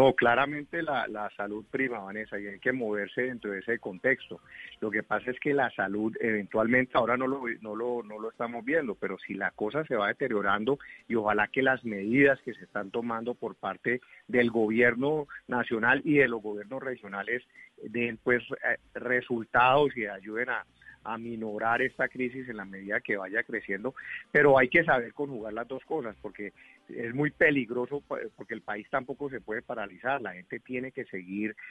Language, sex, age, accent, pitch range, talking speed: Spanish, male, 40-59, Colombian, 105-130 Hz, 185 wpm